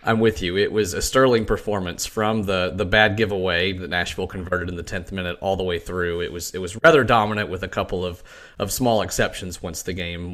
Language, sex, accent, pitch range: English, male, American, 95-125 Hz